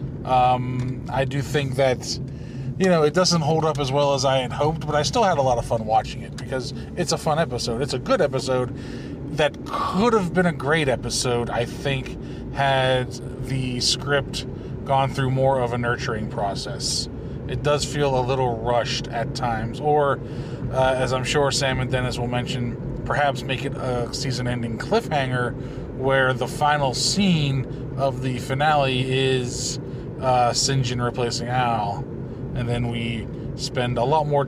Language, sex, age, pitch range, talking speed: English, male, 20-39, 125-145 Hz, 170 wpm